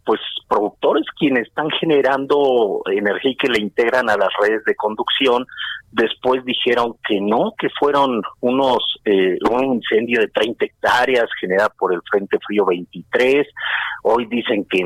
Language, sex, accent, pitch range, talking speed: Spanish, male, Mexican, 100-150 Hz, 150 wpm